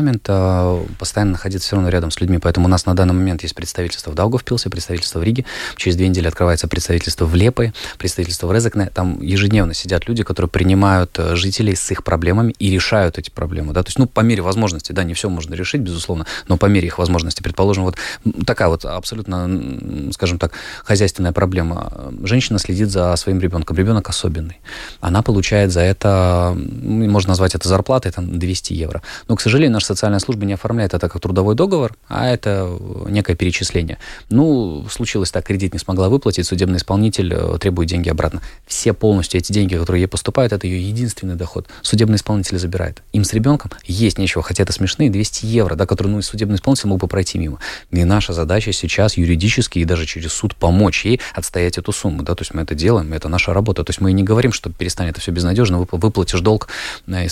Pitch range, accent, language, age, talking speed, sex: 90-105 Hz, native, Russian, 20-39, 195 wpm, male